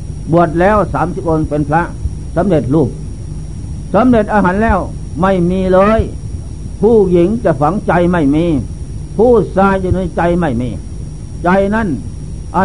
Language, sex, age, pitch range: Thai, male, 60-79, 145-200 Hz